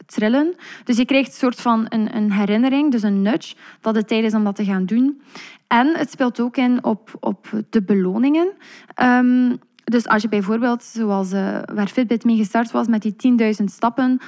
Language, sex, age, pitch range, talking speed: Dutch, female, 20-39, 210-250 Hz, 195 wpm